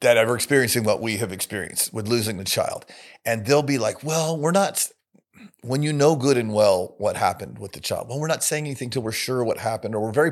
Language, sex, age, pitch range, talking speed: English, male, 40-59, 115-150 Hz, 245 wpm